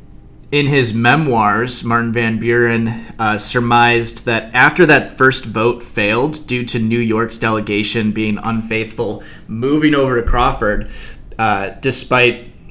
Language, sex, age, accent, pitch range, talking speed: English, male, 30-49, American, 115-135 Hz, 125 wpm